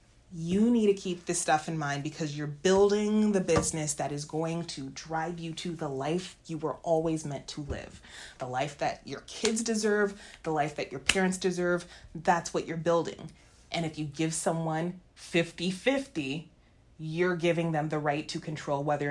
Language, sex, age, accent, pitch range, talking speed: English, female, 30-49, American, 170-265 Hz, 180 wpm